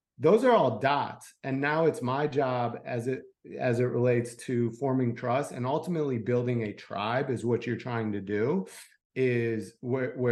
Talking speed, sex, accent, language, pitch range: 175 wpm, male, American, English, 115-130 Hz